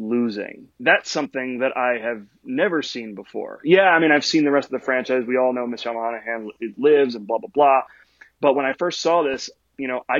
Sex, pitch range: male, 130-155 Hz